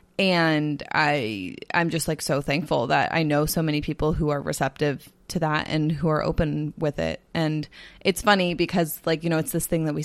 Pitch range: 155-200 Hz